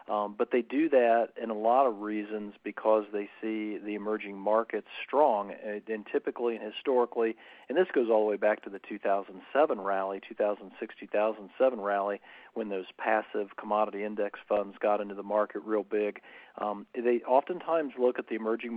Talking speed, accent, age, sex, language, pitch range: 175 wpm, American, 40-59, male, English, 105-115 Hz